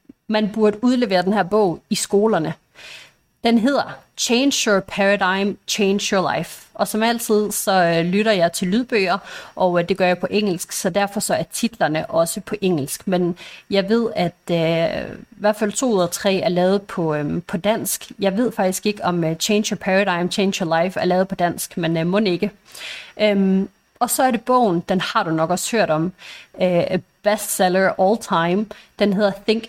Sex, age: female, 30-49